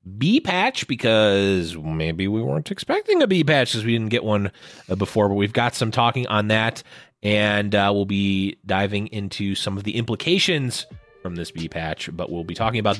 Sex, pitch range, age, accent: male, 100-155 Hz, 30-49, American